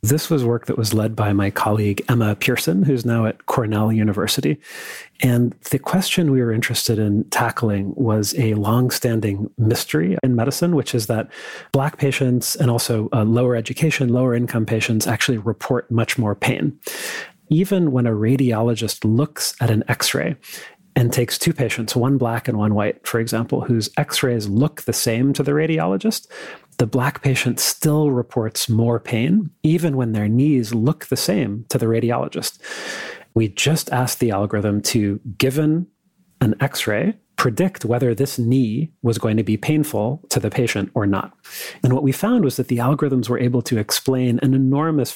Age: 40-59